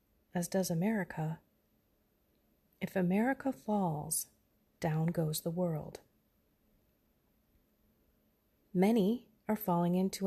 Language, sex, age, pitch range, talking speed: English, female, 30-49, 155-210 Hz, 80 wpm